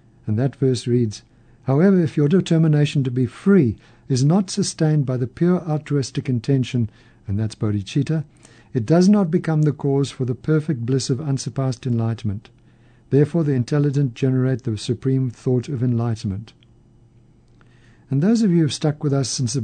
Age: 60-79